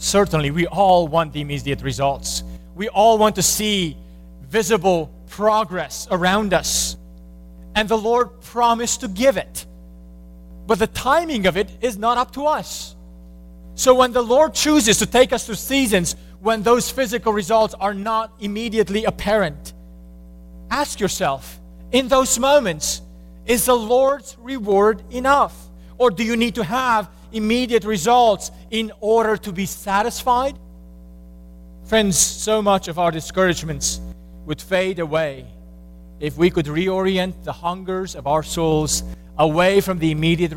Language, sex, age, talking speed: English, male, 30-49, 140 wpm